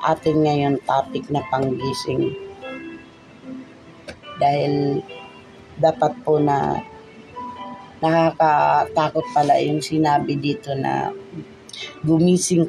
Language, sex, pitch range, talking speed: Filipino, female, 140-165 Hz, 75 wpm